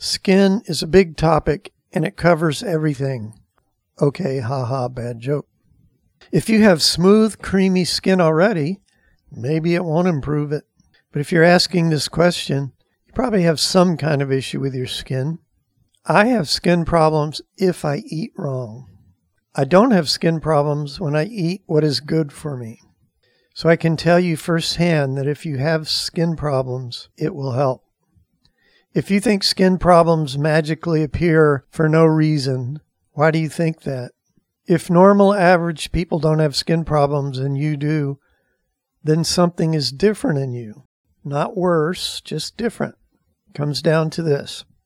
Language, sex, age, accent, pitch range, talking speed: English, male, 50-69, American, 140-175 Hz, 160 wpm